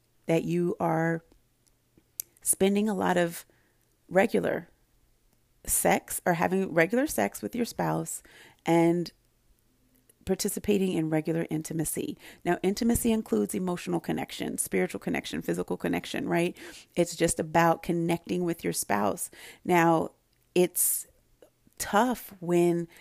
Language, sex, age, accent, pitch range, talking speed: English, female, 40-59, American, 165-205 Hz, 110 wpm